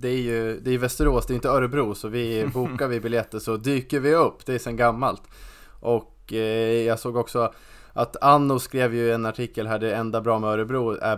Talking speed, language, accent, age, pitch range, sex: 220 wpm, Swedish, Norwegian, 20-39, 110-125 Hz, male